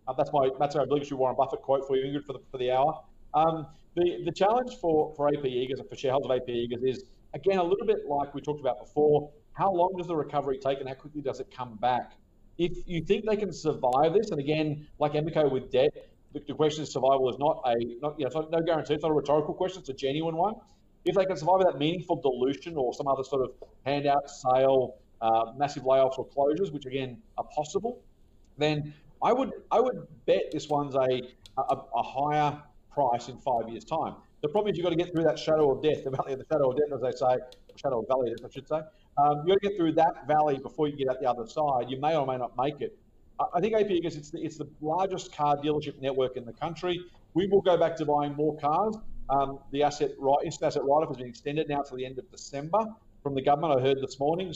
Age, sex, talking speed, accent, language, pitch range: 30-49, male, 245 wpm, Australian, English, 135-170 Hz